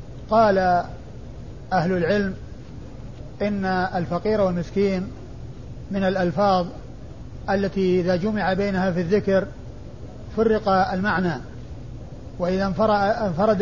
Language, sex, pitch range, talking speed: Arabic, male, 185-205 Hz, 80 wpm